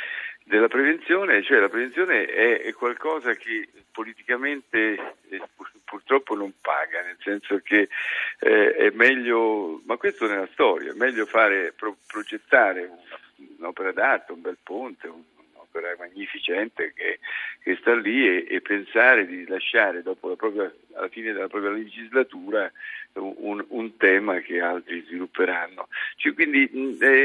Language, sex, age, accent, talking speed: Italian, male, 50-69, native, 150 wpm